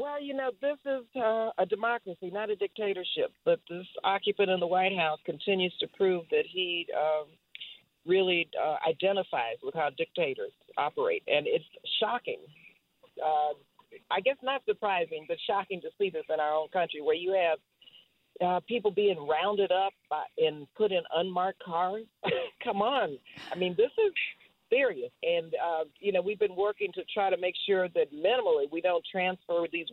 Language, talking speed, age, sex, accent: English, 170 wpm, 50-69, female, American